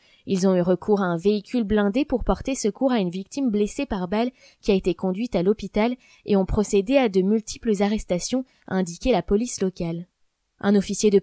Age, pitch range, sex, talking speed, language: 20-39, 195-250 Hz, female, 205 wpm, French